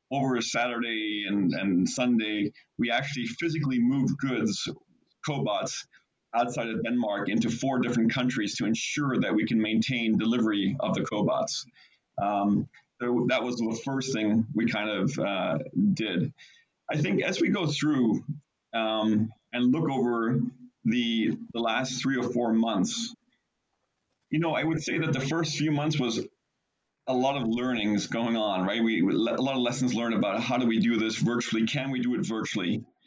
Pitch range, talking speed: 115-145 Hz, 170 wpm